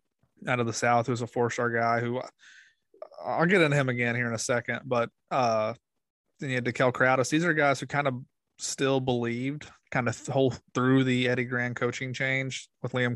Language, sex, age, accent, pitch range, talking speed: English, male, 20-39, American, 120-135 Hz, 205 wpm